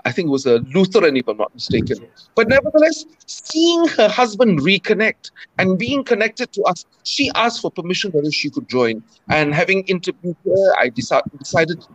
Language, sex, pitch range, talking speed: English, male, 165-230 Hz, 175 wpm